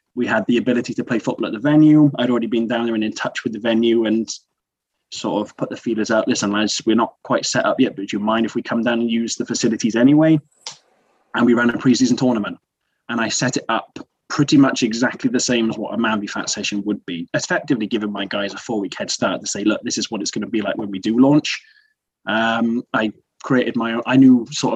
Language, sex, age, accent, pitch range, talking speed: English, male, 20-39, British, 105-125 Hz, 250 wpm